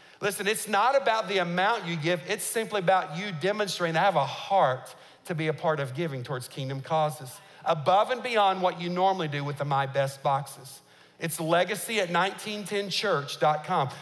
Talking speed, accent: 185 wpm, American